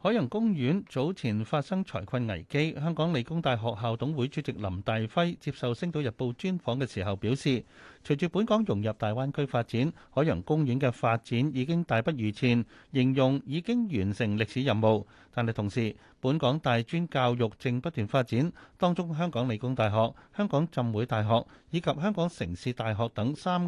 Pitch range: 110-155 Hz